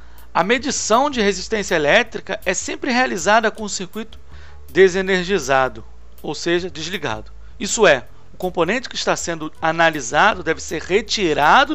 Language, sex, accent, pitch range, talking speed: Portuguese, male, Brazilian, 145-205 Hz, 135 wpm